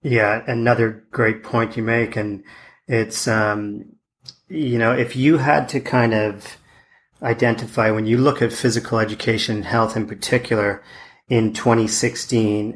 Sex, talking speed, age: male, 140 wpm, 40-59